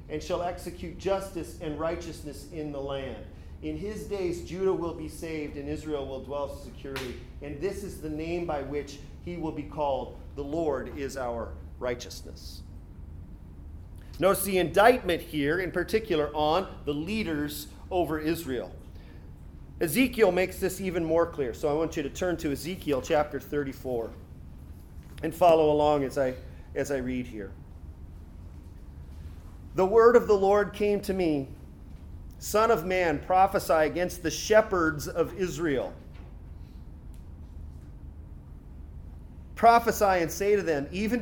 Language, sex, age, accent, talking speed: English, male, 40-59, American, 140 wpm